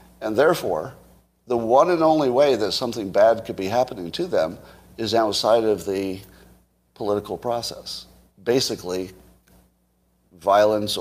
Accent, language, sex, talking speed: American, English, male, 125 wpm